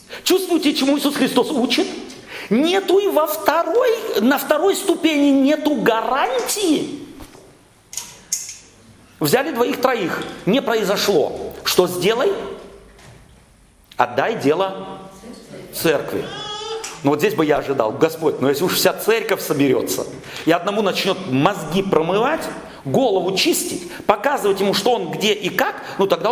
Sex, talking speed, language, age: male, 120 wpm, Russian, 40-59